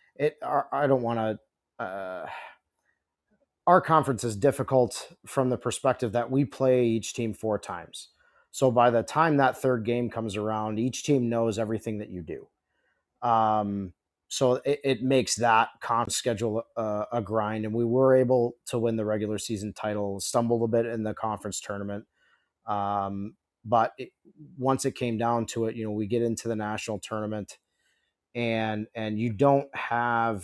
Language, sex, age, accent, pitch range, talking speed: English, male, 30-49, American, 105-125 Hz, 165 wpm